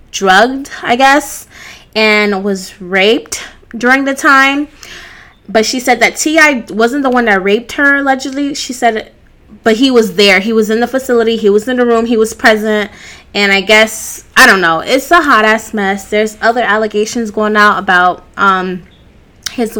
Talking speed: 180 wpm